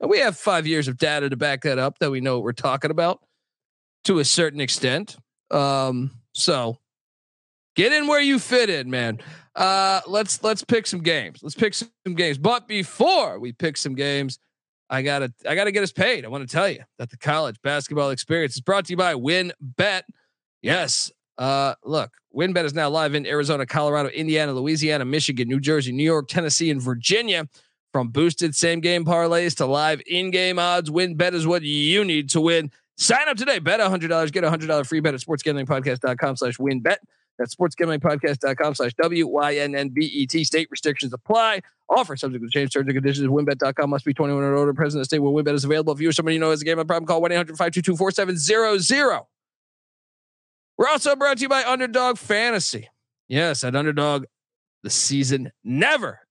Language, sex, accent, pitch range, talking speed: English, male, American, 140-175 Hz, 190 wpm